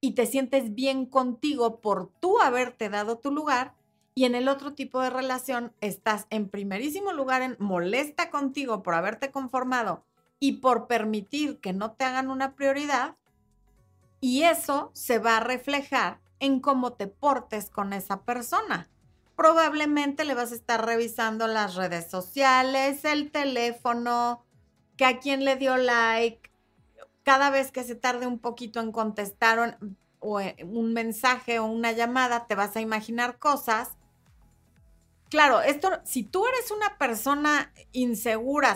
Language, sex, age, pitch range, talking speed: Spanish, female, 40-59, 225-280 Hz, 150 wpm